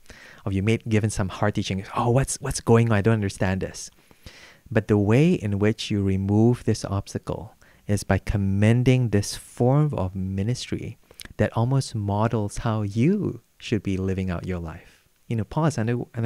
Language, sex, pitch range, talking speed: English, male, 95-115 Hz, 175 wpm